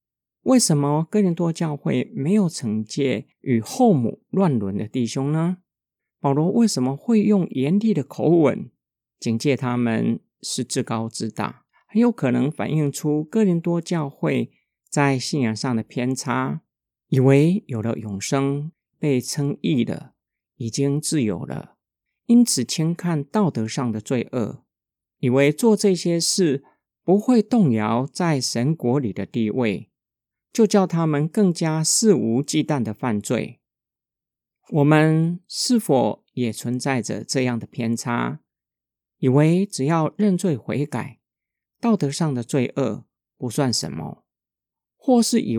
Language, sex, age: Chinese, male, 50-69